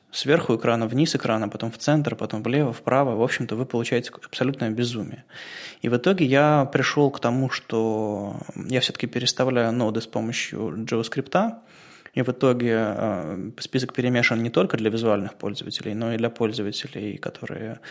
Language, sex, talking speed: Russian, male, 155 wpm